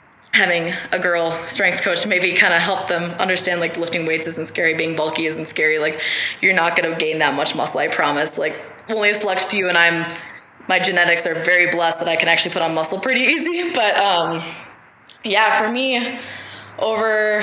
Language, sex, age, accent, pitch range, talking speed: English, female, 20-39, American, 165-190 Hz, 200 wpm